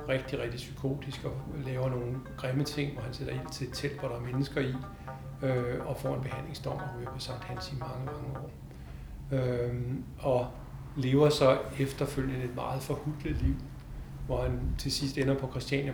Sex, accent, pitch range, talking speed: male, native, 130-150 Hz, 185 wpm